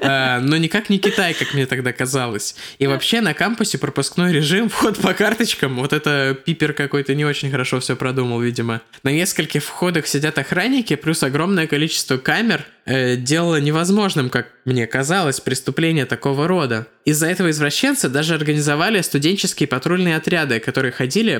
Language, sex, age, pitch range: Russian, male, 20-39, 135-170 Hz